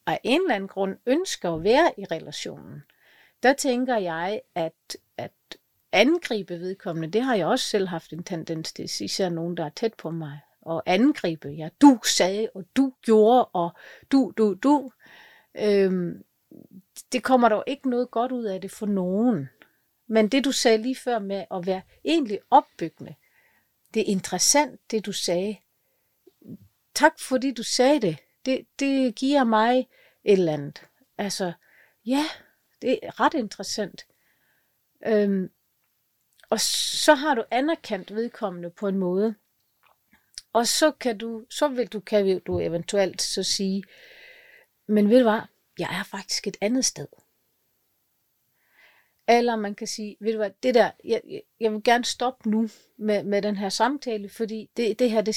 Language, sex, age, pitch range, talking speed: Danish, female, 40-59, 195-255 Hz, 160 wpm